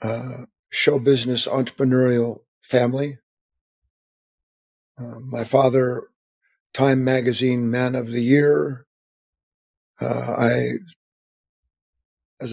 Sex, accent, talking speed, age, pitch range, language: male, American, 80 wpm, 50-69, 115-135 Hz, English